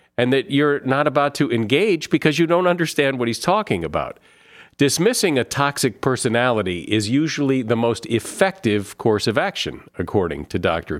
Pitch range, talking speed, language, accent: 105-140 Hz, 165 wpm, English, American